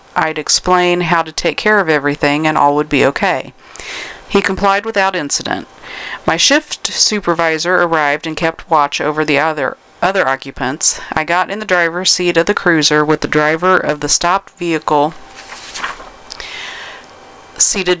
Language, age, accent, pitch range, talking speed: English, 40-59, American, 150-180 Hz, 155 wpm